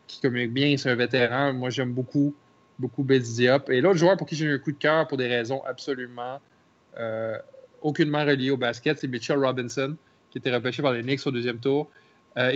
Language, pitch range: French, 125-155 Hz